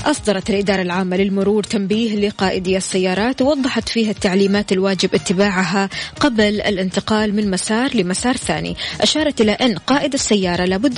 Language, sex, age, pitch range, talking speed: Arabic, female, 20-39, 190-225 Hz, 130 wpm